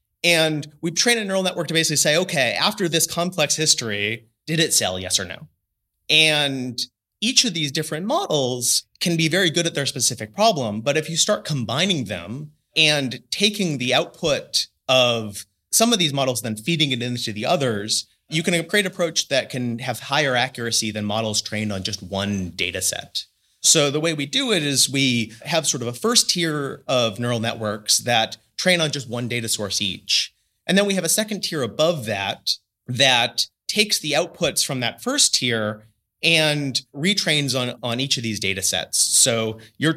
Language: English